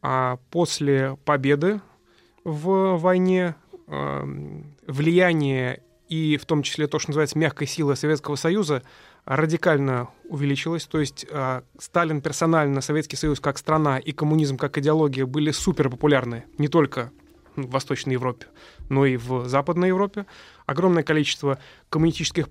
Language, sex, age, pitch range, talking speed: Russian, male, 20-39, 135-155 Hz, 125 wpm